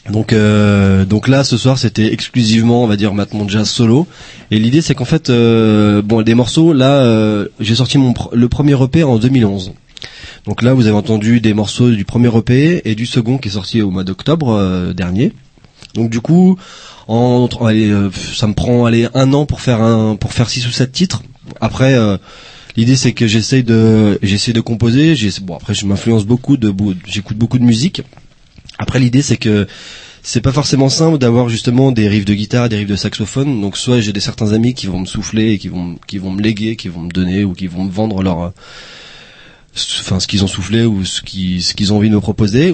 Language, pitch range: French, 100-125 Hz